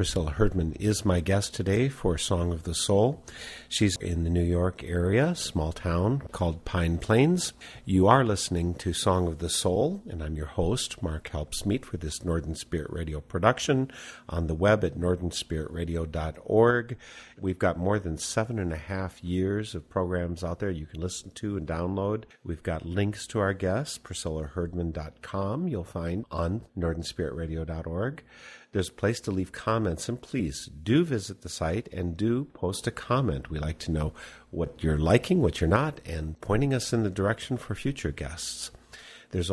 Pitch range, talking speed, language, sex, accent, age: 85-105 Hz, 175 wpm, English, male, American, 50-69